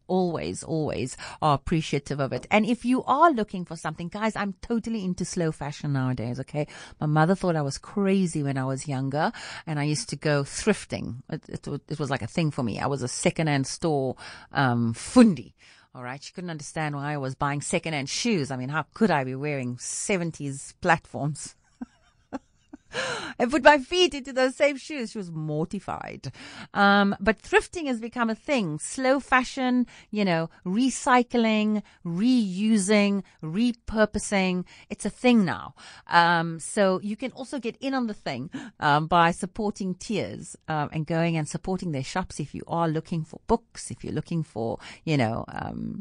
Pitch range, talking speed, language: 145-220 Hz, 175 wpm, English